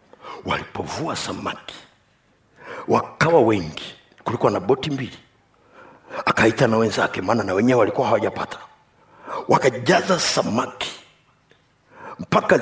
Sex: male